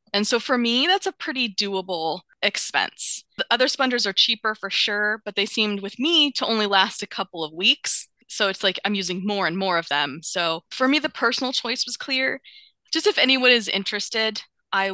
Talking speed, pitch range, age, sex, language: 210 wpm, 185-245 Hz, 20-39, female, English